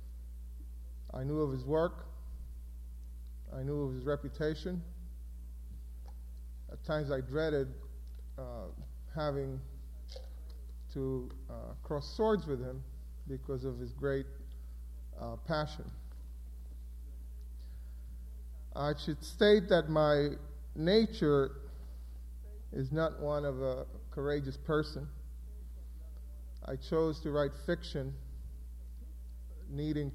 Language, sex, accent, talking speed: English, male, American, 95 wpm